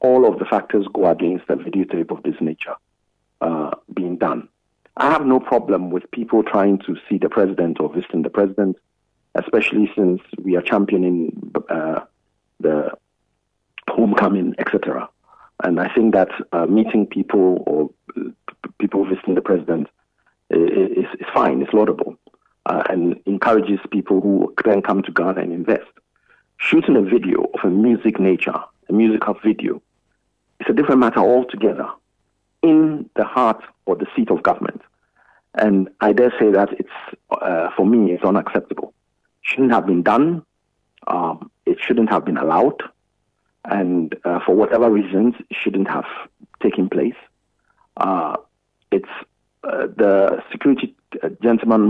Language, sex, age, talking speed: English, male, 50-69, 150 wpm